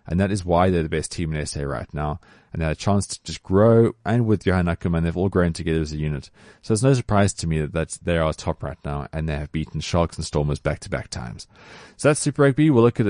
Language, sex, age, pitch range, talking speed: English, male, 30-49, 80-115 Hz, 280 wpm